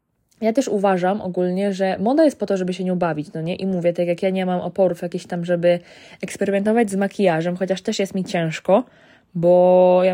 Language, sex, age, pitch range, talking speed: Polish, female, 20-39, 180-225 Hz, 215 wpm